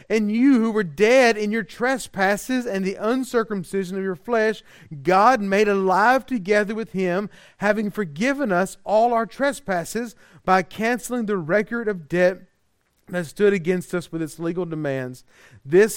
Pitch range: 135-190 Hz